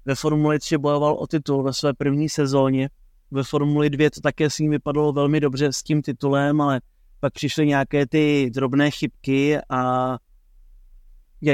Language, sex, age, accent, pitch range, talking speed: Czech, male, 20-39, native, 135-150 Hz, 165 wpm